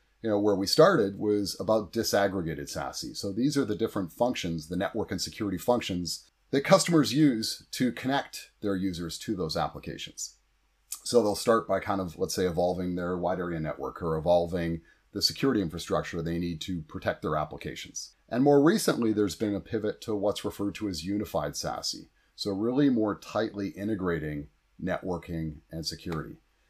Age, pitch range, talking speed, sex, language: 30-49, 90-110 Hz, 170 wpm, male, English